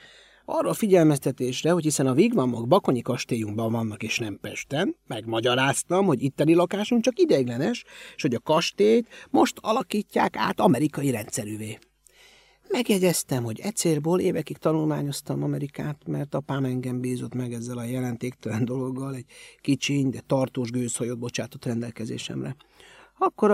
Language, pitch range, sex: Hungarian, 125-170 Hz, male